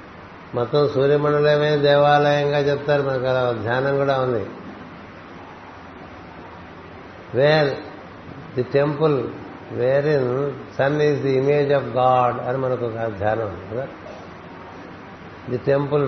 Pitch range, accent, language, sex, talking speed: 120-140 Hz, native, Telugu, male, 105 wpm